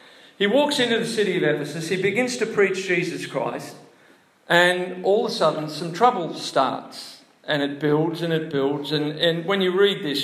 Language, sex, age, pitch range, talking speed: English, male, 50-69, 140-185 Hz, 195 wpm